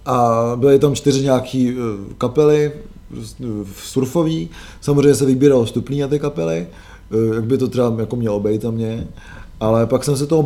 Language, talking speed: Czech, 160 wpm